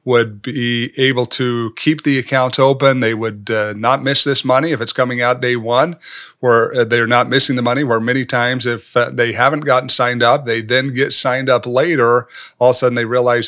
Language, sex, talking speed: English, male, 220 wpm